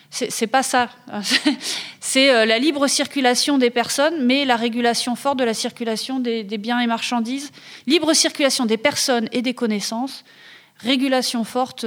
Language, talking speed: French, 150 wpm